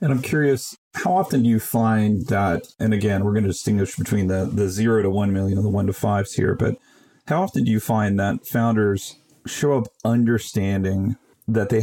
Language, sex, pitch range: English, male, 95-115 Hz